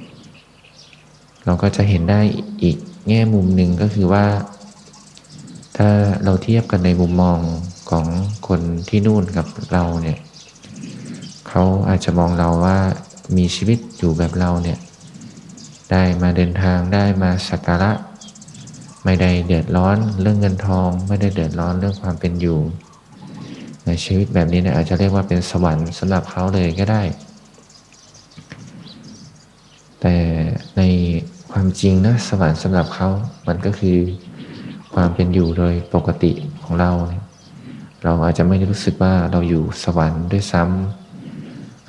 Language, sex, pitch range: Thai, male, 85-100 Hz